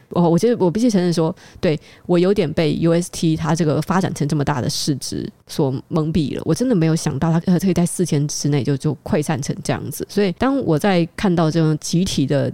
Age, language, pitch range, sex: 20-39, Chinese, 150-175 Hz, female